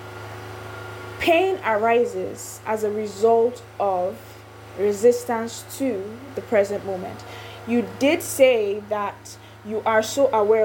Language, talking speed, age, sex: English, 105 wpm, 20-39, female